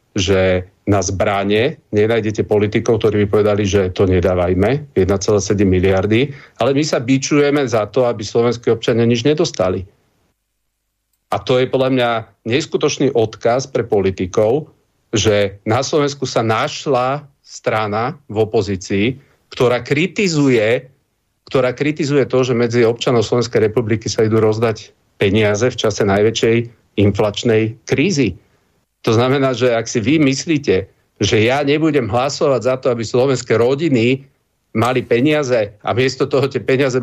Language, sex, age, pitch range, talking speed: Slovak, male, 40-59, 105-130 Hz, 135 wpm